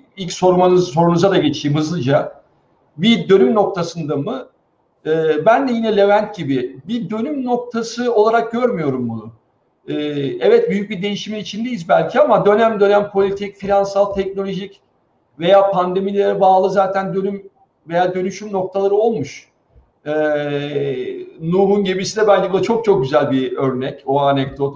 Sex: male